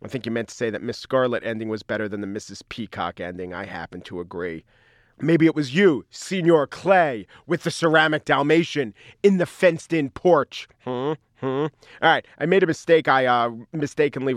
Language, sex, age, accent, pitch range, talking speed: English, male, 40-59, American, 115-150 Hz, 190 wpm